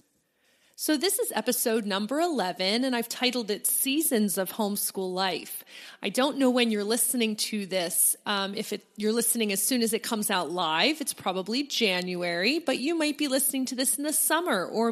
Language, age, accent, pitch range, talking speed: English, 30-49, American, 205-270 Hz, 190 wpm